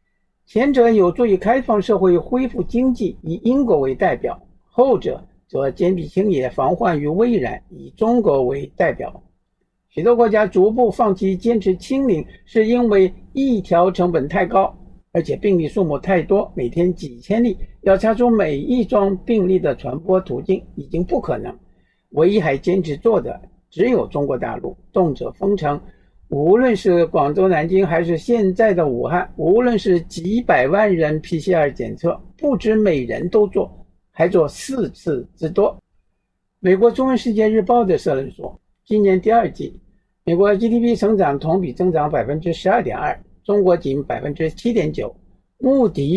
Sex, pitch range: male, 175-230 Hz